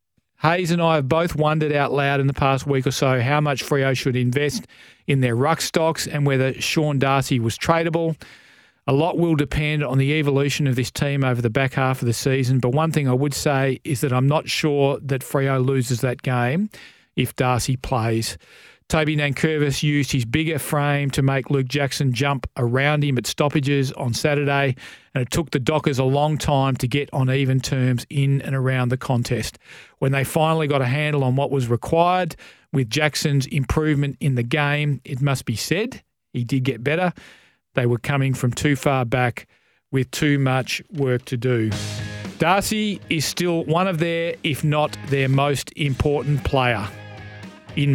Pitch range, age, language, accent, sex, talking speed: 130-150 Hz, 40-59, English, Australian, male, 190 wpm